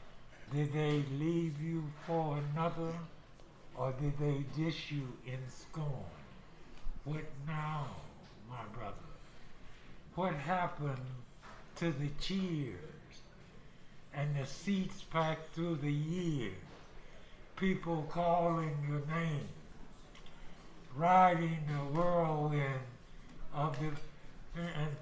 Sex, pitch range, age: male, 140-165 Hz, 60-79